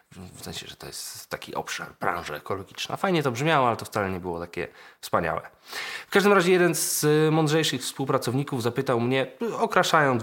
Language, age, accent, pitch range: Polish, 20-39, native, 110-150 Hz